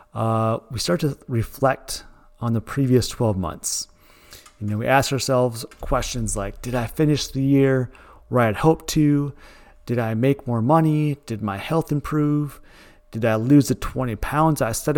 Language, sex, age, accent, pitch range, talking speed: English, male, 30-49, American, 115-145 Hz, 175 wpm